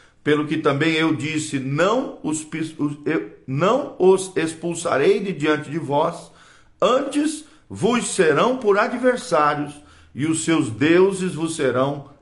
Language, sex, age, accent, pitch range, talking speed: Portuguese, male, 50-69, Brazilian, 135-185 Hz, 120 wpm